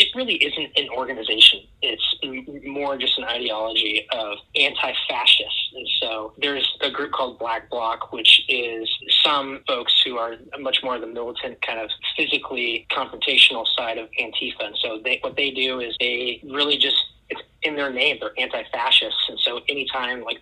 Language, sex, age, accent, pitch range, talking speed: English, male, 30-49, American, 115-140 Hz, 170 wpm